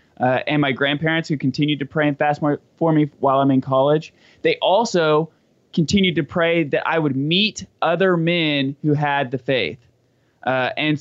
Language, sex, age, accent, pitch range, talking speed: English, male, 20-39, American, 135-165 Hz, 180 wpm